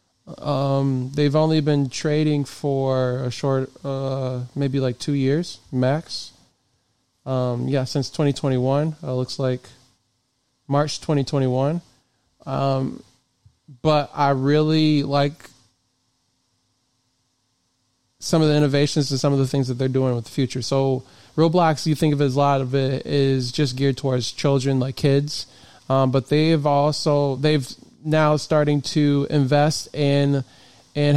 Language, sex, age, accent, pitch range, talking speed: English, male, 20-39, American, 130-145 Hz, 140 wpm